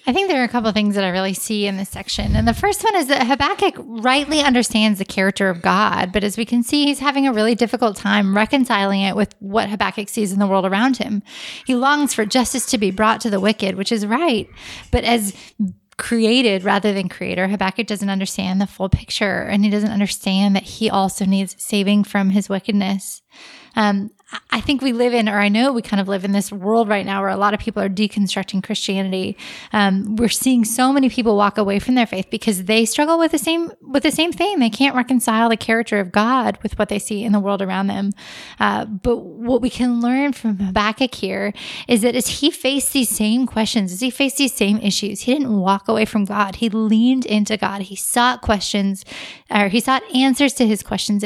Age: 20-39